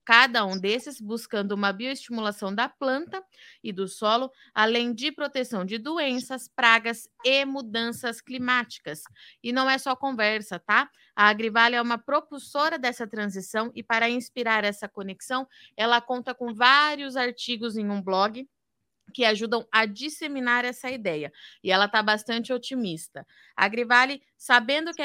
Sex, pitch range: female, 220-260 Hz